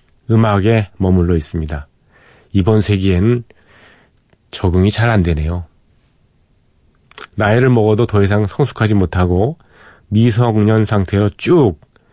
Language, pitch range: Korean, 90-115 Hz